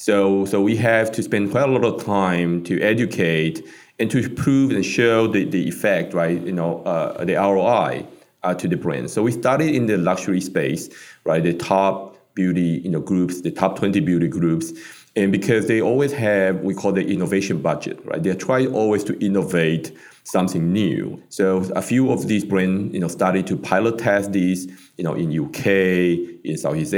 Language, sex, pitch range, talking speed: English, male, 90-110 Hz, 190 wpm